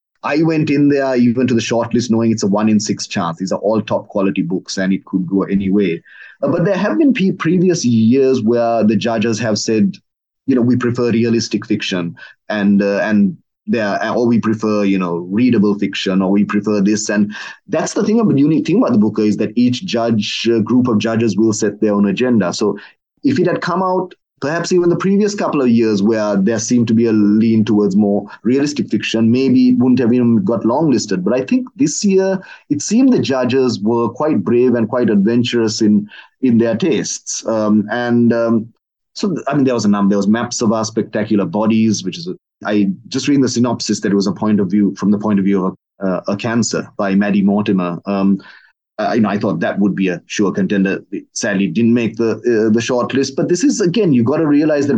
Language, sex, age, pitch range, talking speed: English, male, 30-49, 100-125 Hz, 225 wpm